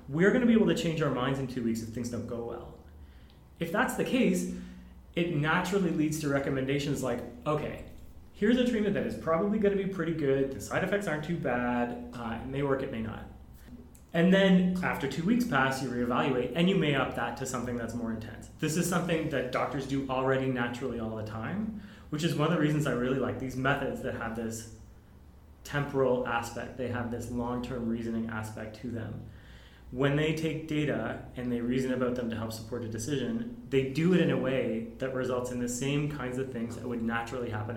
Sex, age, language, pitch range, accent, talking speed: male, 30-49, English, 115-140 Hz, American, 220 wpm